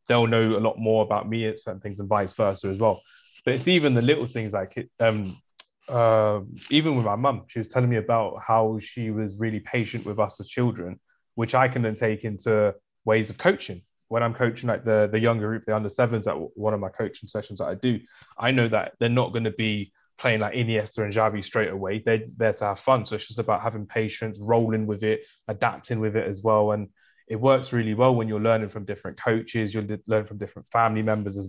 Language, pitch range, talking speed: English, 105-120 Hz, 240 wpm